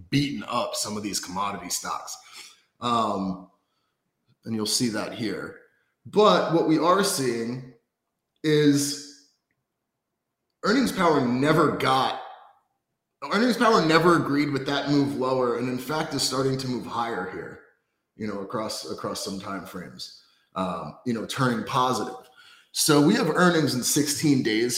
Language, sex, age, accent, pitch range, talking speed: English, male, 30-49, American, 115-150 Hz, 145 wpm